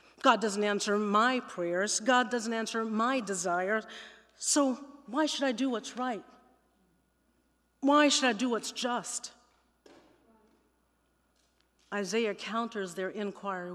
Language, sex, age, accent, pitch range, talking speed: English, female, 40-59, American, 190-235 Hz, 120 wpm